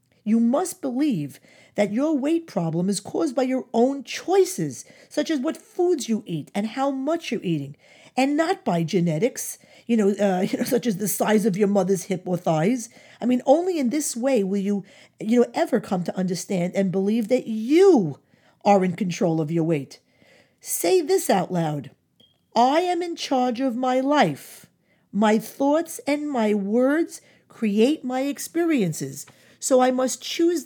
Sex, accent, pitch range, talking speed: female, American, 185-275 Hz, 175 wpm